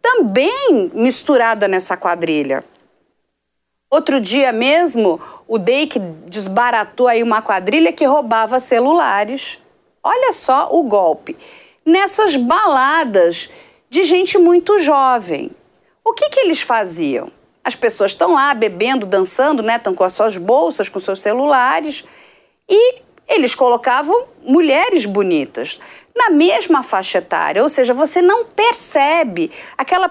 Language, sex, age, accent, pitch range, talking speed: English, female, 50-69, Brazilian, 225-340 Hz, 120 wpm